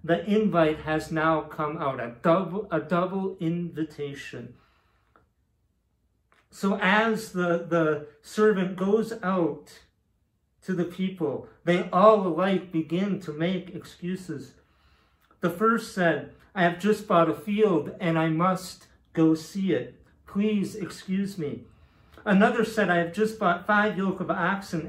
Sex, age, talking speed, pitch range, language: male, 50-69, 135 wpm, 155-195 Hz, English